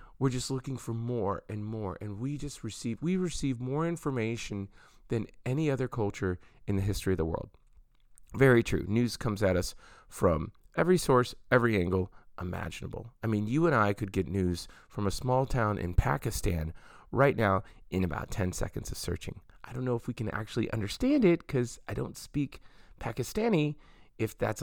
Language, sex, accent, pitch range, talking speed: English, male, American, 95-130 Hz, 185 wpm